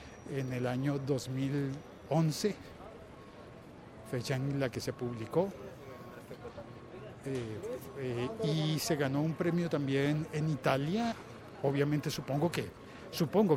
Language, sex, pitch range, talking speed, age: Spanish, male, 130-160 Hz, 105 wpm, 50-69